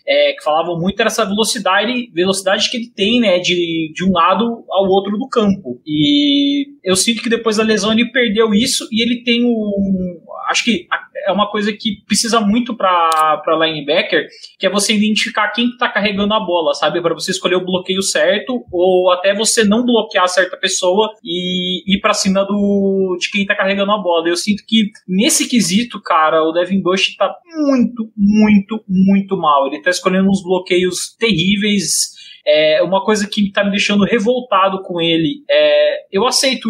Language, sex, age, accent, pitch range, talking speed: Portuguese, male, 20-39, Brazilian, 180-220 Hz, 185 wpm